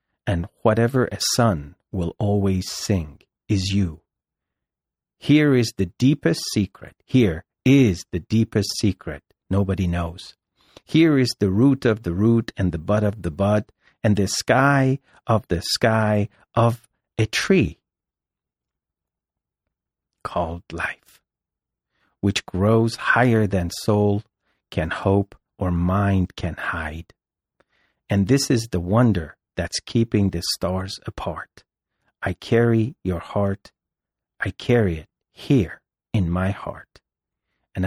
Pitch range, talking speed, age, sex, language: 90-110 Hz, 125 wpm, 50-69, male, English